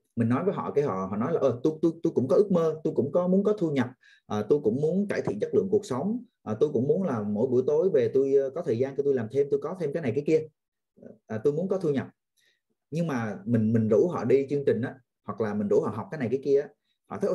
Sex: male